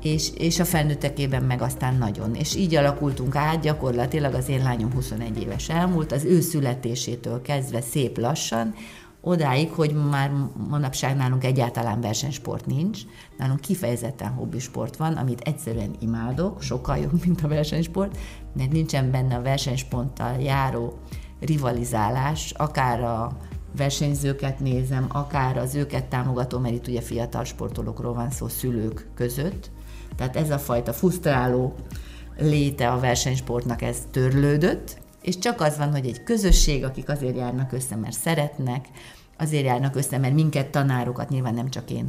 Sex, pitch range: female, 120-150 Hz